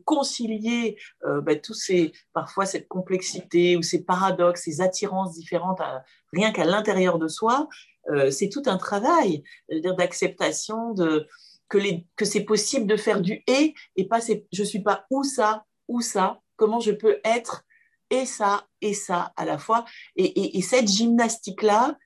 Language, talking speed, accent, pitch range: French, 180 wpm, French, 175-220 Hz